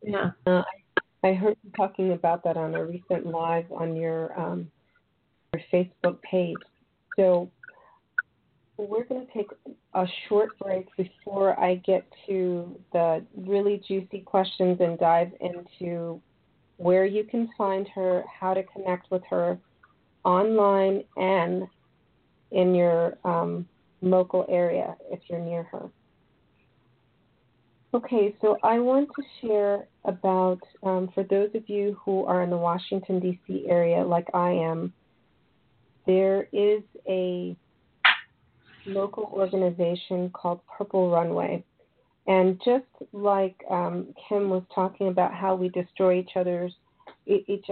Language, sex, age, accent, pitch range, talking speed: English, female, 40-59, American, 175-200 Hz, 125 wpm